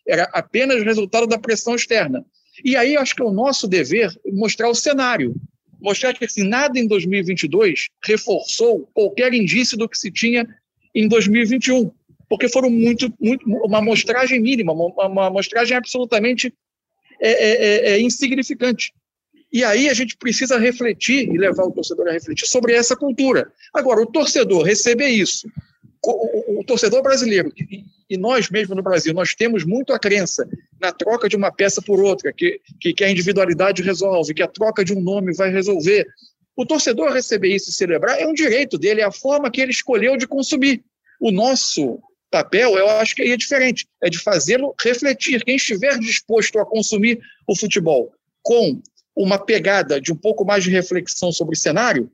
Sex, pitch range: male, 200-260 Hz